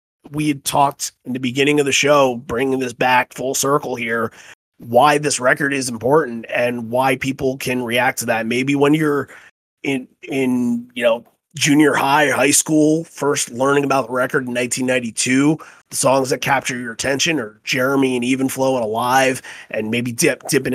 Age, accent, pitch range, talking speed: 30-49, American, 120-140 Hz, 175 wpm